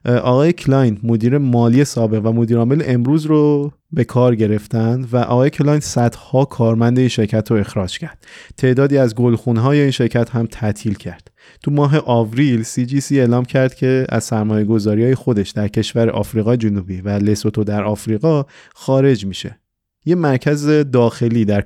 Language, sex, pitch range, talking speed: Persian, male, 110-135 Hz, 160 wpm